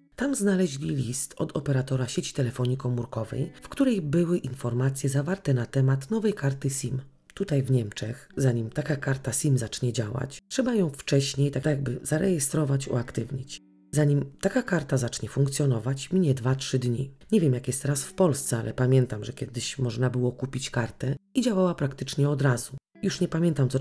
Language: Polish